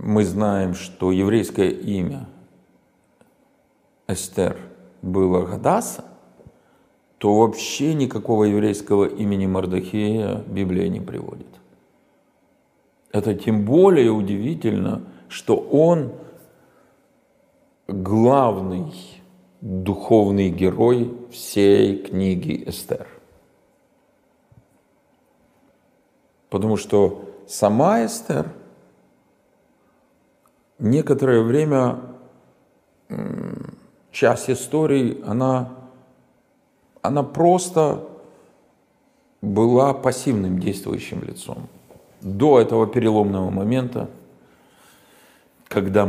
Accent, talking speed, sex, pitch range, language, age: native, 65 wpm, male, 95-135 Hz, Russian, 50-69